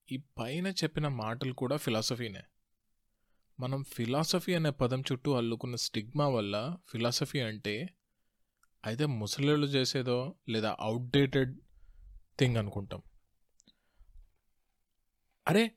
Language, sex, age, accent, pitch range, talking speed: Telugu, male, 20-39, native, 110-145 Hz, 90 wpm